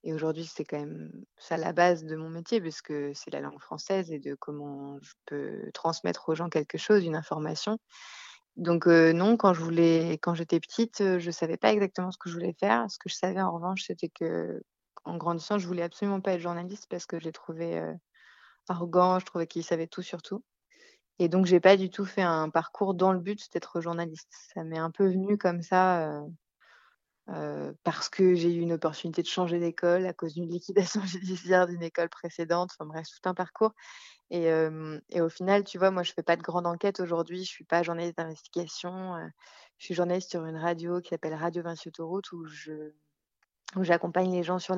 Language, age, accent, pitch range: French, 20-39, French, 165-185 Hz